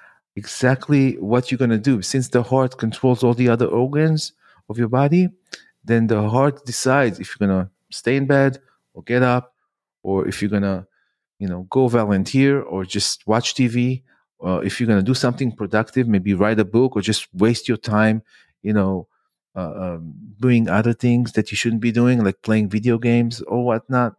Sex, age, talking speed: male, 40-59, 195 wpm